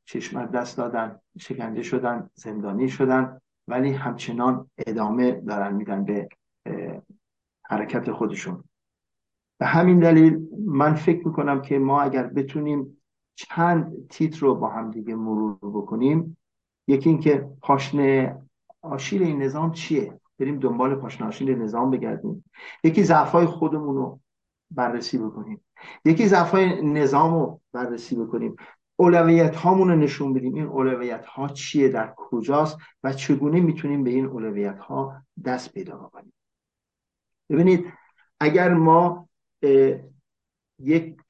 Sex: male